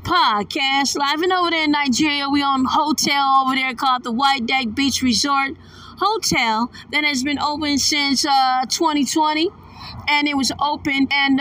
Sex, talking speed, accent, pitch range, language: female, 170 wpm, American, 240-280 Hz, English